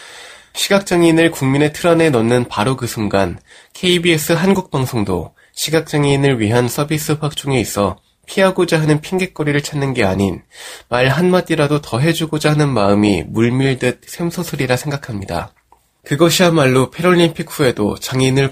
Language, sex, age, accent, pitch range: Korean, male, 20-39, native, 105-155 Hz